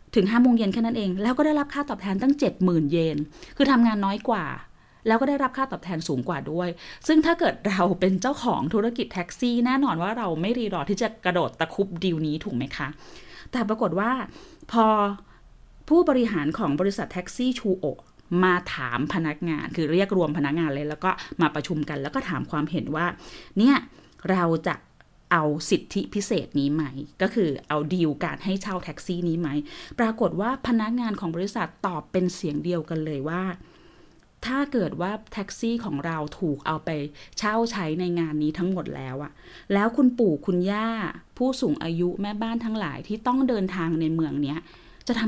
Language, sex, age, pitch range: Thai, female, 20-39, 160-225 Hz